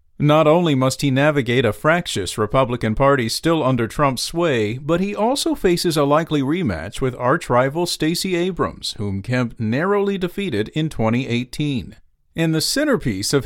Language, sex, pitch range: English, male, 125-185 Hz